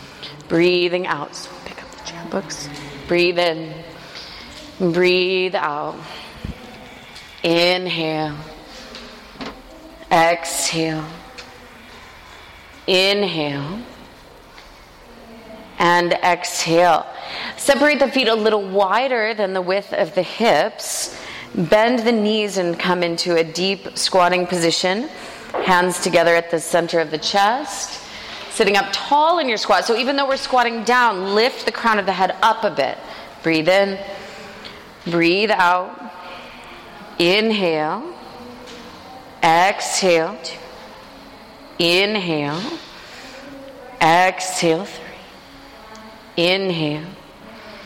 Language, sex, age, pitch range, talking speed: English, female, 30-49, 170-210 Hz, 100 wpm